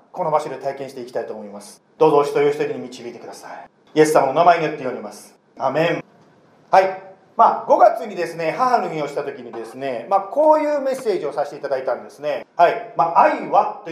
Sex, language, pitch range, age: male, Japanese, 165-270 Hz, 40-59